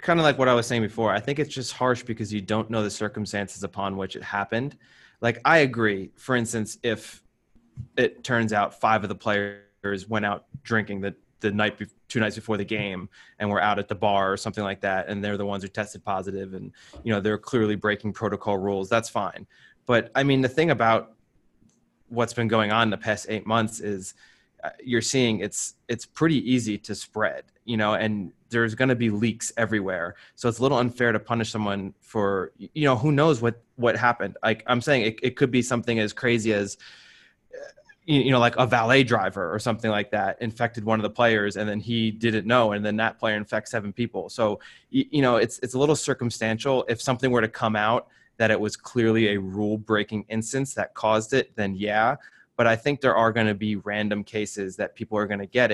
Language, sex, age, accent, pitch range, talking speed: English, male, 20-39, American, 105-120 Hz, 220 wpm